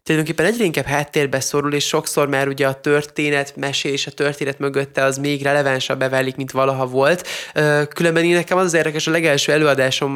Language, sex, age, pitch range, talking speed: Hungarian, male, 20-39, 140-160 Hz, 190 wpm